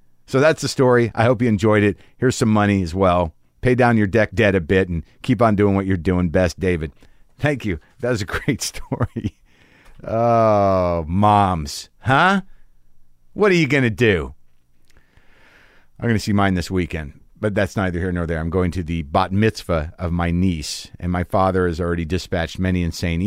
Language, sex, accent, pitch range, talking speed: English, male, American, 85-115 Hz, 195 wpm